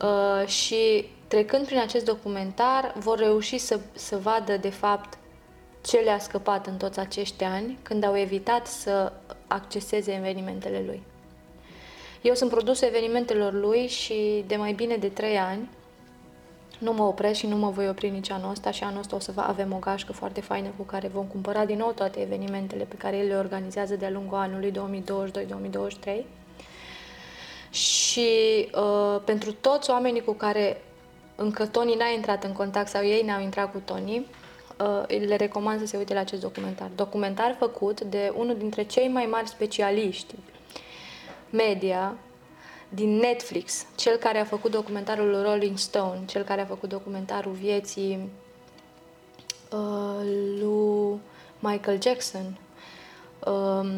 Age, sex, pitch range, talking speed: 20-39, female, 195-220 Hz, 150 wpm